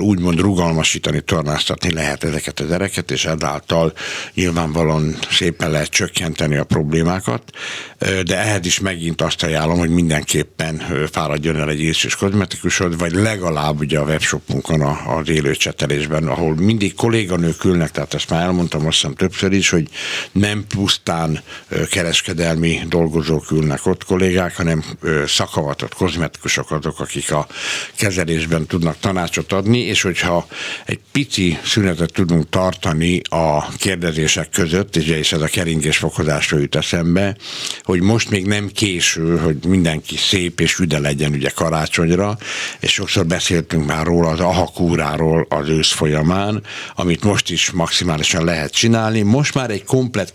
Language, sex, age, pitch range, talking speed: Hungarian, male, 60-79, 80-95 Hz, 135 wpm